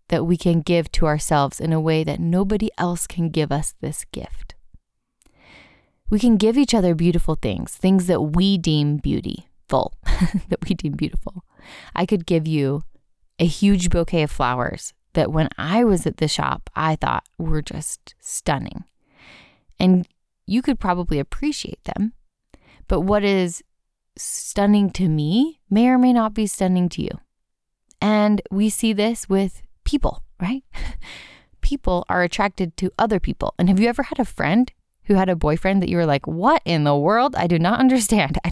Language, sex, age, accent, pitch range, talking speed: English, female, 20-39, American, 155-200 Hz, 175 wpm